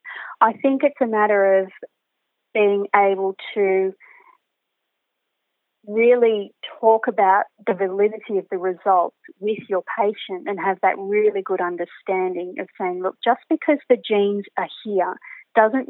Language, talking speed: English, 135 wpm